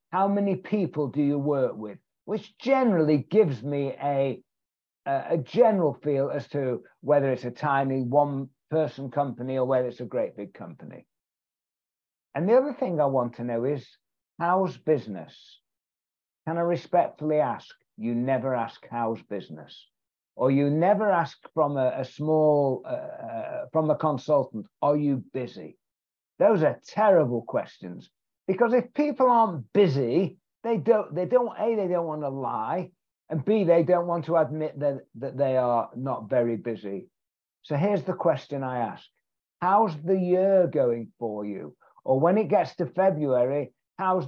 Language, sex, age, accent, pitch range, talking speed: English, male, 60-79, British, 130-185 Hz, 160 wpm